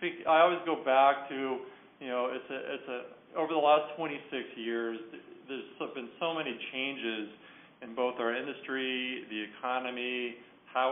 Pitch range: 110-130 Hz